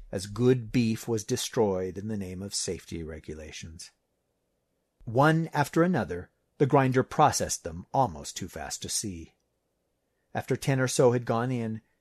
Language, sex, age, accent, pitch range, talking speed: English, male, 50-69, American, 100-130 Hz, 150 wpm